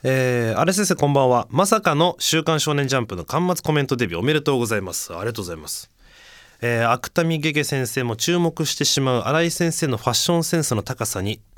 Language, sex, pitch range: Japanese, male, 110-165 Hz